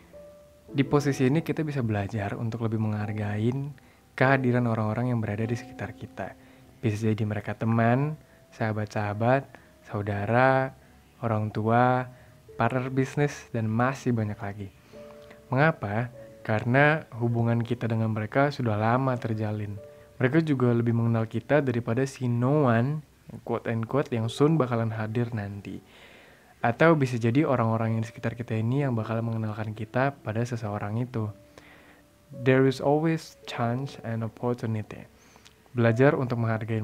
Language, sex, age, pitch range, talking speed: Indonesian, male, 20-39, 110-130 Hz, 130 wpm